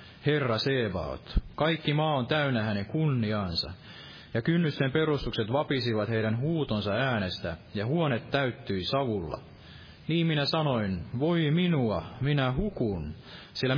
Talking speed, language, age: 120 wpm, Finnish, 30-49